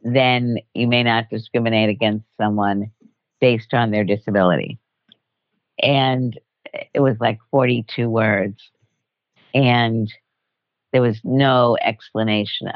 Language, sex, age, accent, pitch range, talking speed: English, female, 50-69, American, 105-125 Hz, 105 wpm